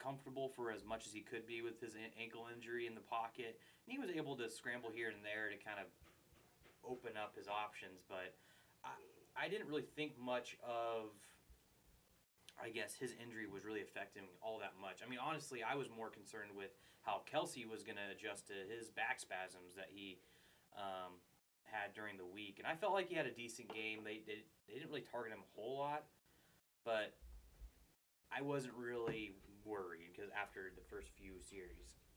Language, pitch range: English, 100-125 Hz